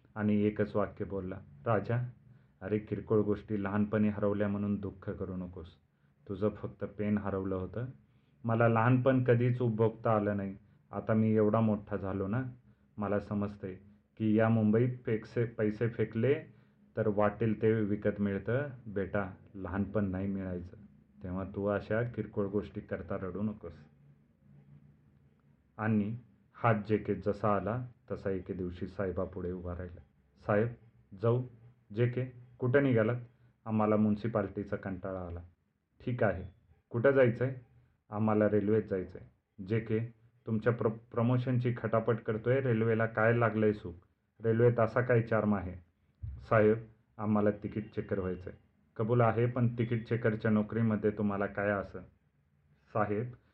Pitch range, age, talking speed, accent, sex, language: 100-115 Hz, 30-49, 130 wpm, native, male, Marathi